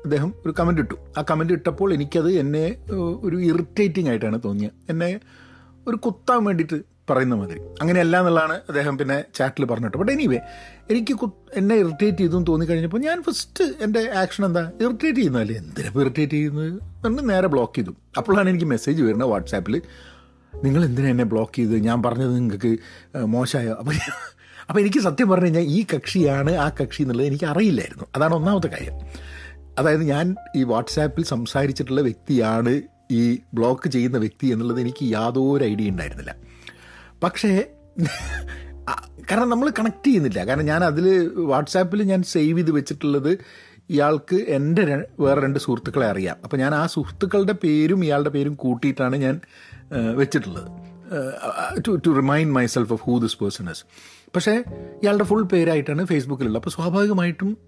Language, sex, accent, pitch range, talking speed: Malayalam, male, native, 120-180 Hz, 140 wpm